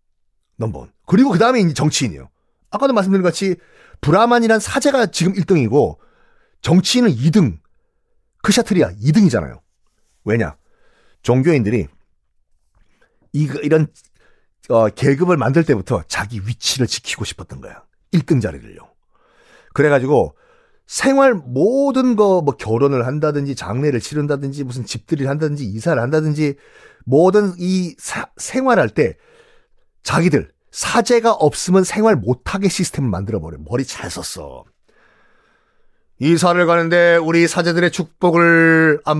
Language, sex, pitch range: Korean, male, 130-185 Hz